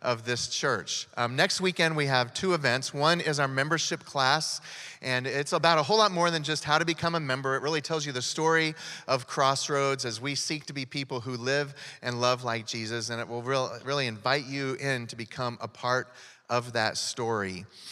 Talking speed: 210 wpm